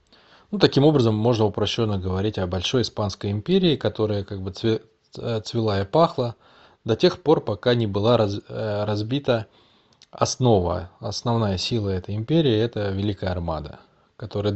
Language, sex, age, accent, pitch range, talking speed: Russian, male, 20-39, native, 95-120 Hz, 130 wpm